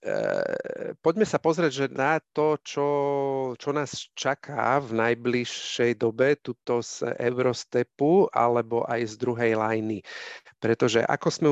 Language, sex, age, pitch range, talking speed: Slovak, male, 40-59, 115-135 Hz, 125 wpm